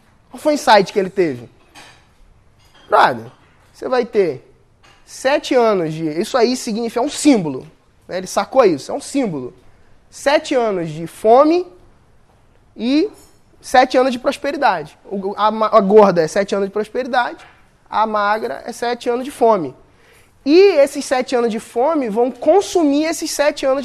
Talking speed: 145 wpm